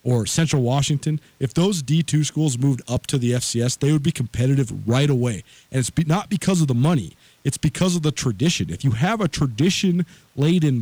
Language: English